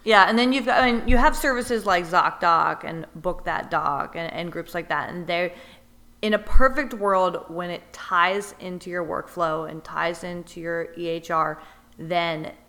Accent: American